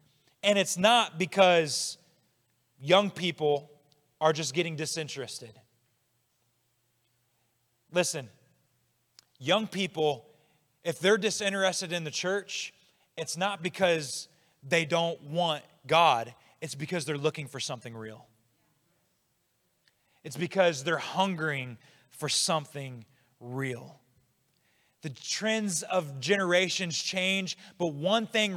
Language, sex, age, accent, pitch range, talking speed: English, male, 30-49, American, 140-190 Hz, 100 wpm